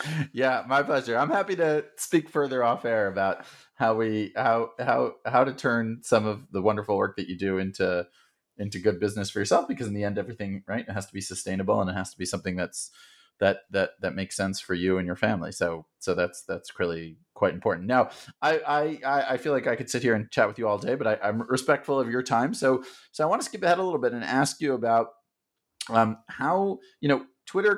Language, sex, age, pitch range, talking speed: English, male, 30-49, 100-135 Hz, 235 wpm